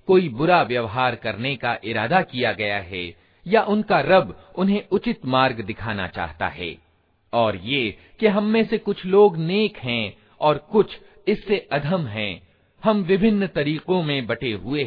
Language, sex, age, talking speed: Hindi, male, 50-69, 150 wpm